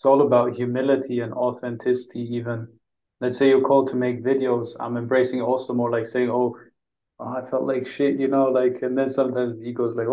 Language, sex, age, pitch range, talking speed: English, male, 20-39, 120-130 Hz, 205 wpm